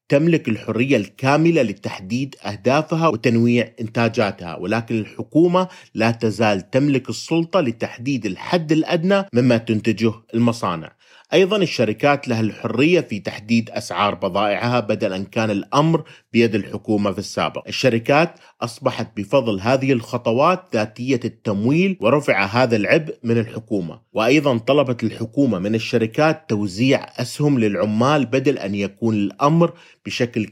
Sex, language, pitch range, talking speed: male, Arabic, 105-135 Hz, 120 wpm